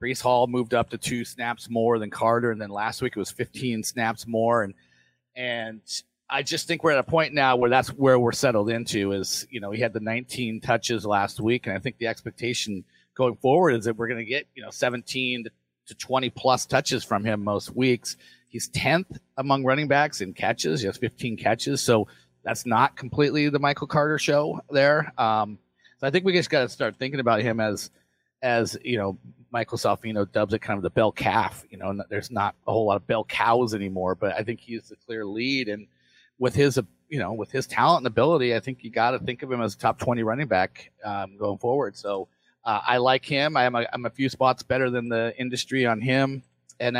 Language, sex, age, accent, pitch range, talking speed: English, male, 30-49, American, 105-130 Hz, 225 wpm